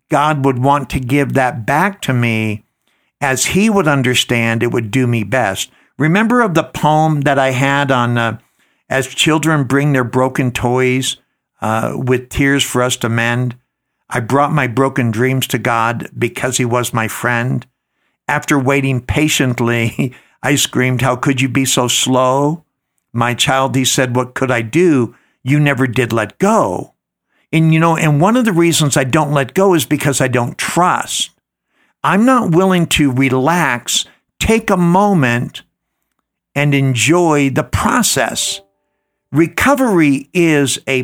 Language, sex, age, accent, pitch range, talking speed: English, male, 60-79, American, 125-150 Hz, 160 wpm